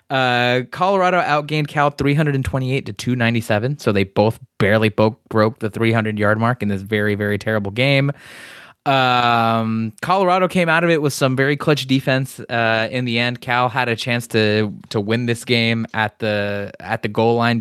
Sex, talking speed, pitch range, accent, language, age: male, 175 wpm, 105-135 Hz, American, English, 20-39